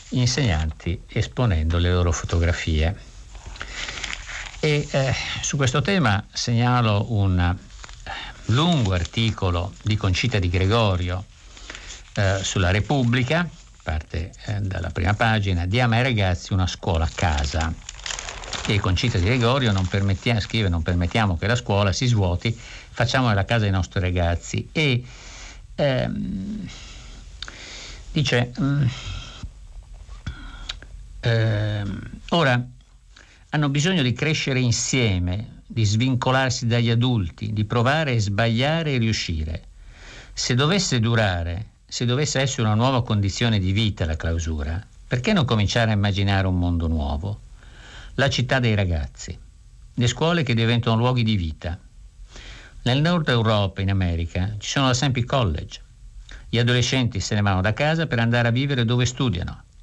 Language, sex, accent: Italian, male, native